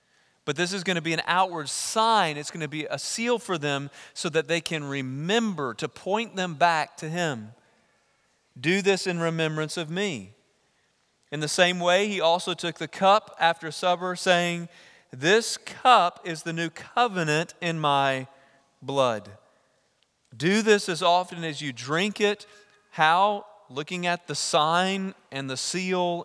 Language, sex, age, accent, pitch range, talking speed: English, male, 40-59, American, 140-185 Hz, 160 wpm